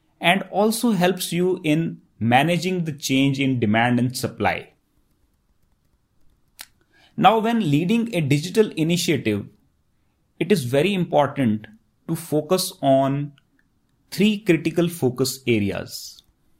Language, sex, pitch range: English, male, 120-180 Hz